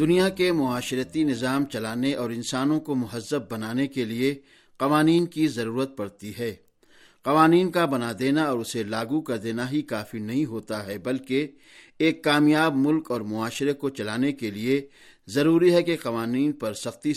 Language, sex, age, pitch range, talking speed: Urdu, male, 60-79, 120-155 Hz, 165 wpm